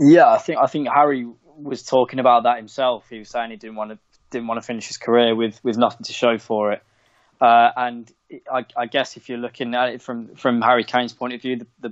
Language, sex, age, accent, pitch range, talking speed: English, male, 10-29, British, 115-130 Hz, 250 wpm